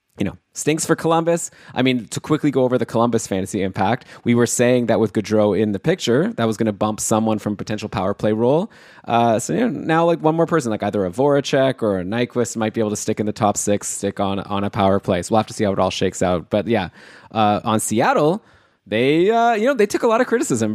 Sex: male